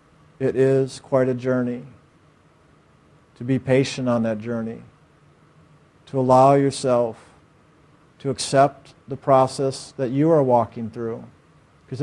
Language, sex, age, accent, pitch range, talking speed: English, male, 50-69, American, 125-145 Hz, 120 wpm